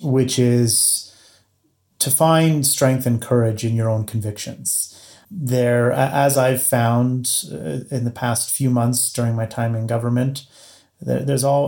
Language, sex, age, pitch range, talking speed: English, male, 30-49, 115-130 Hz, 140 wpm